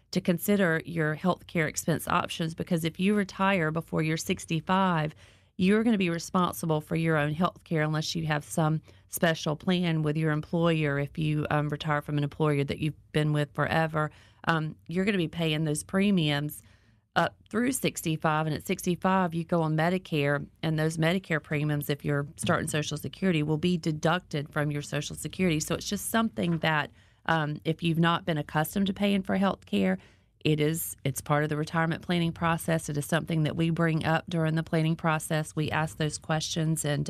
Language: English